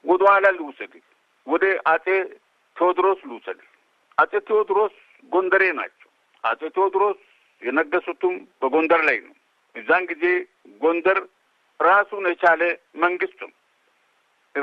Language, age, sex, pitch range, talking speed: Amharic, 60-79, male, 160-205 Hz, 90 wpm